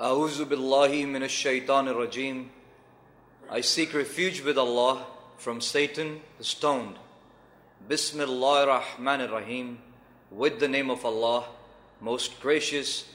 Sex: male